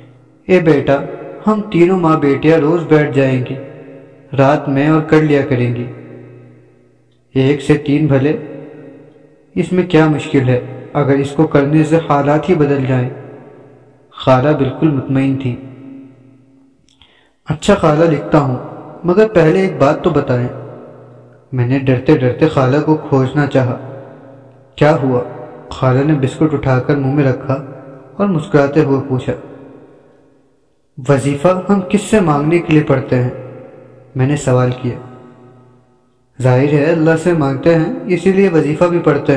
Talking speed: 145 wpm